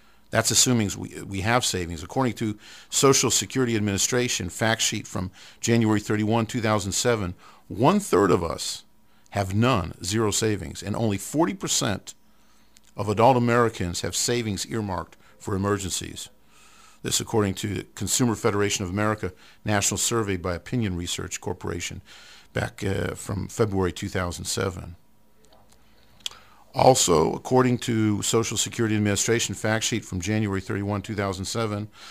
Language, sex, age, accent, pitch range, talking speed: English, male, 50-69, American, 95-120 Hz, 120 wpm